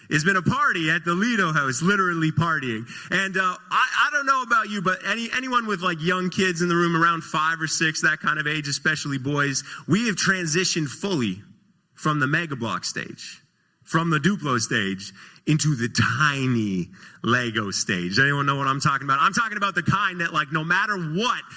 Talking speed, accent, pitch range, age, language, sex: 200 wpm, American, 155-235 Hz, 30-49, English, male